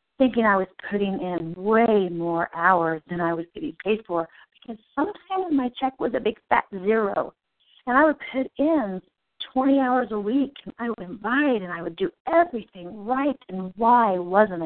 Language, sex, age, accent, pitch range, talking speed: English, female, 40-59, American, 180-235 Hz, 185 wpm